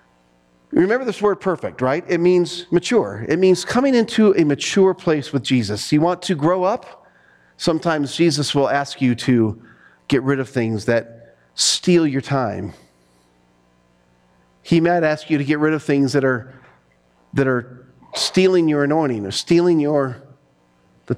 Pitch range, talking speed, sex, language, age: 115-175 Hz, 160 wpm, male, English, 40-59